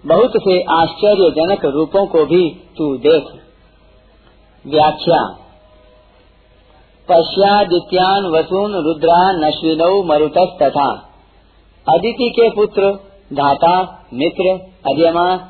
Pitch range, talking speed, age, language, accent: 160-195 Hz, 75 wpm, 50-69, Hindi, native